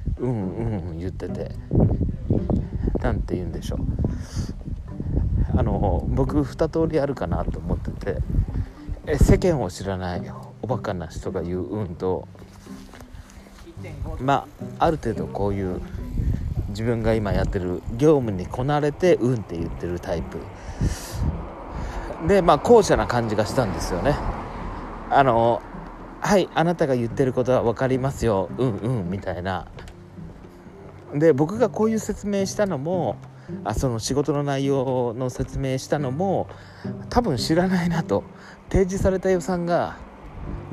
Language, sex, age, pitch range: Japanese, male, 40-59, 95-145 Hz